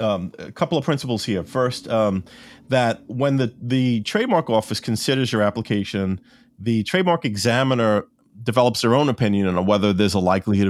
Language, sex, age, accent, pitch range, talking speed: English, male, 40-59, American, 100-125 Hz, 165 wpm